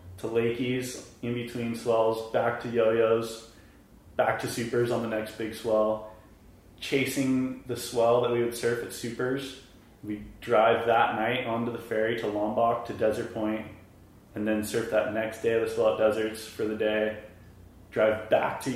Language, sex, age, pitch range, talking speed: English, male, 20-39, 95-115 Hz, 175 wpm